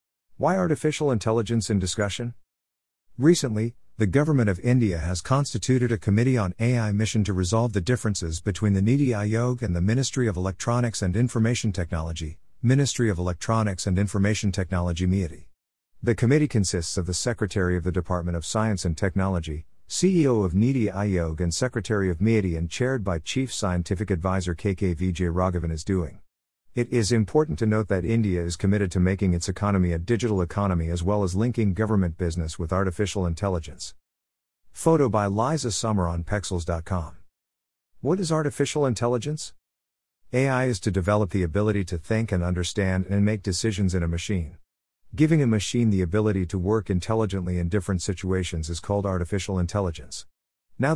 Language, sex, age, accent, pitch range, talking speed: Hindi, male, 50-69, American, 90-115 Hz, 165 wpm